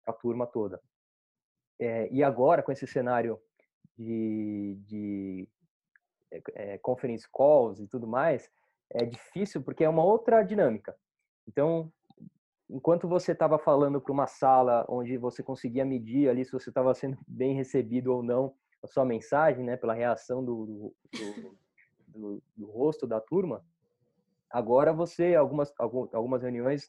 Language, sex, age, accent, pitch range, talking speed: Portuguese, male, 20-39, Brazilian, 120-145 Hz, 145 wpm